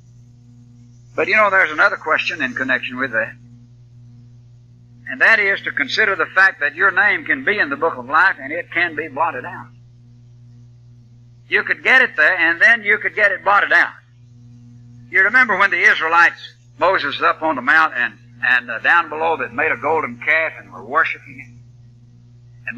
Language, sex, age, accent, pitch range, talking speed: English, male, 60-79, American, 120-155 Hz, 185 wpm